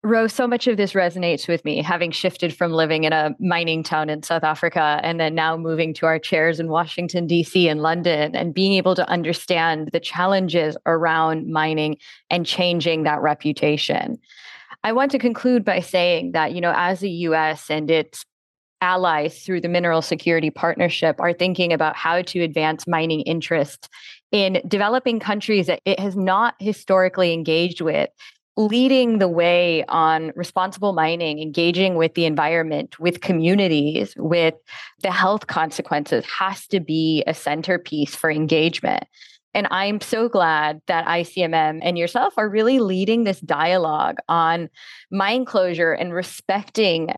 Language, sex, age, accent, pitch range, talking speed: English, female, 20-39, American, 160-190 Hz, 155 wpm